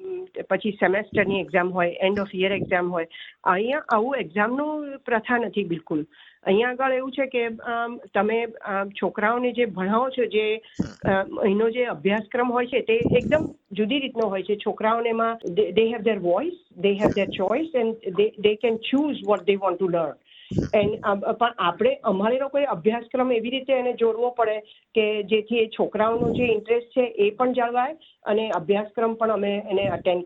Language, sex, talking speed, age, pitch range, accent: Gujarati, female, 155 wpm, 50-69, 205-245 Hz, native